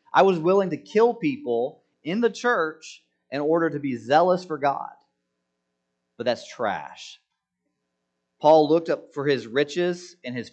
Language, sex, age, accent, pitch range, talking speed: English, male, 30-49, American, 115-180 Hz, 155 wpm